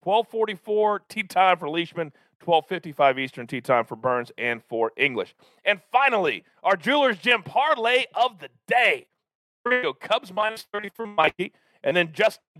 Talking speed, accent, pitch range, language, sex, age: 160 wpm, American, 160-215 Hz, English, male, 40-59